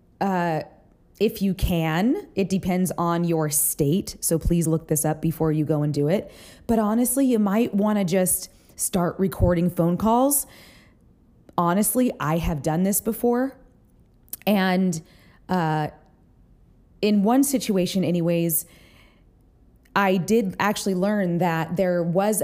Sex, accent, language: female, American, English